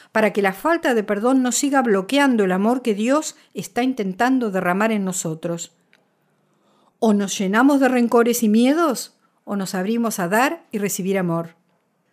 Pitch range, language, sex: 190-245 Hz, English, female